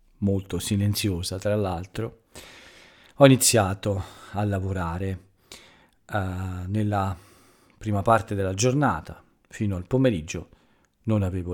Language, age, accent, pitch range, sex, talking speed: Italian, 40-59, native, 90-110 Hz, male, 100 wpm